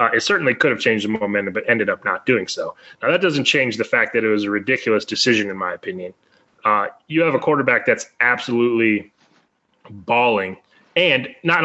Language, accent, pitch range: English, American, 105-130 Hz